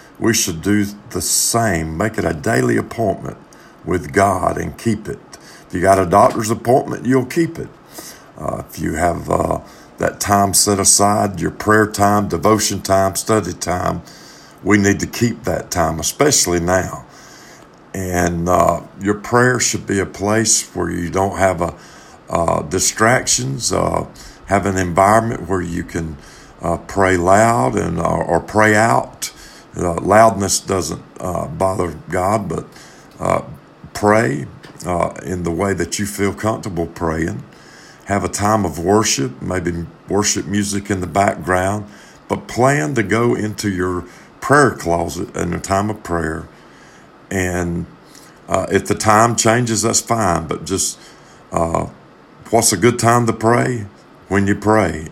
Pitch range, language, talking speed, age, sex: 90-110 Hz, English, 150 wpm, 50-69, male